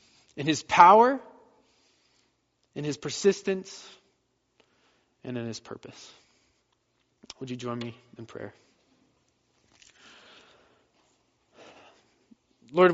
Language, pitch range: English, 125-170 Hz